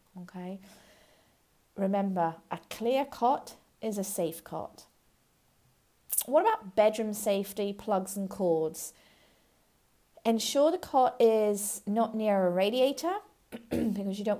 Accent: British